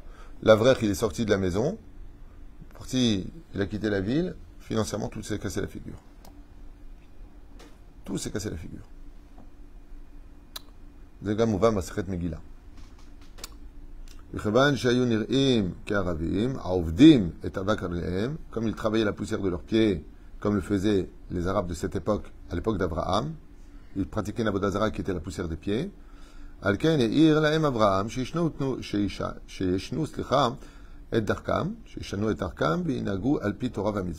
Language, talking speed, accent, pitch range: French, 95 wpm, French, 90-110 Hz